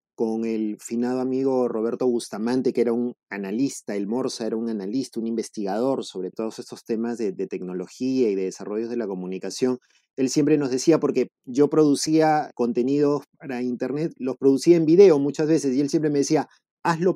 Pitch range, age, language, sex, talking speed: 115-150 Hz, 30-49, Spanish, male, 180 wpm